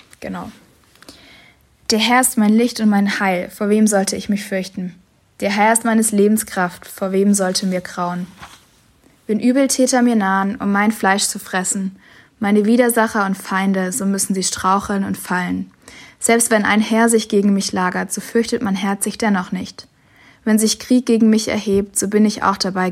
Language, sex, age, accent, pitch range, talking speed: German, female, 20-39, German, 190-215 Hz, 185 wpm